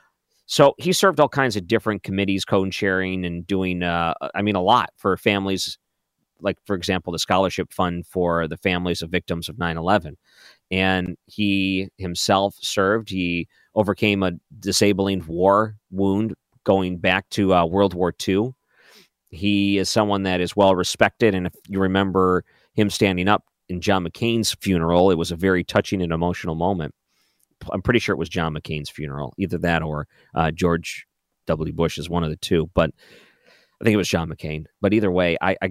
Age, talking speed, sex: 40-59, 175 wpm, male